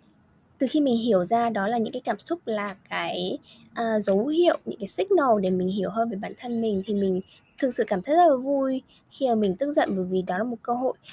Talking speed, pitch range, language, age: 260 wpm, 200-265 Hz, Vietnamese, 10-29